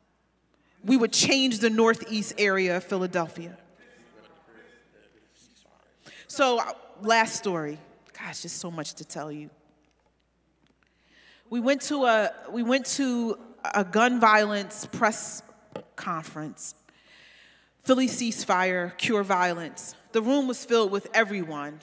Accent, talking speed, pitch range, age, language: American, 115 wpm, 200-275 Hz, 30-49, English